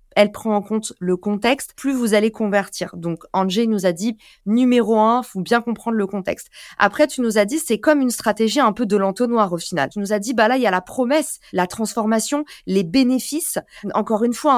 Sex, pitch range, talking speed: female, 200-260 Hz, 230 wpm